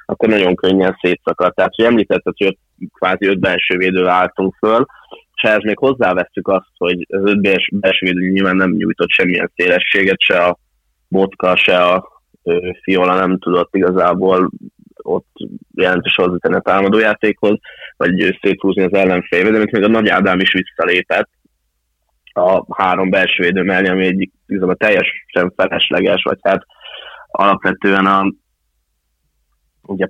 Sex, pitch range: male, 90-100 Hz